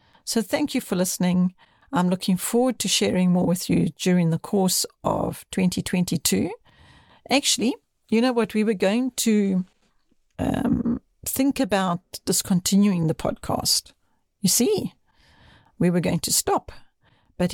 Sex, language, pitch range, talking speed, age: female, English, 180-225 Hz, 135 wpm, 60-79